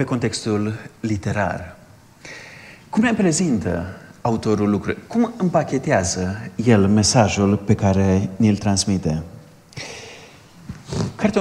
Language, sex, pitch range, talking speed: Romanian, male, 105-140 Hz, 90 wpm